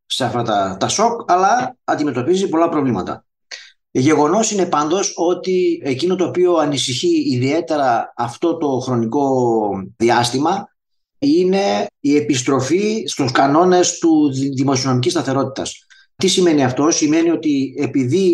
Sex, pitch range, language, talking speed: male, 130-175 Hz, Greek, 120 wpm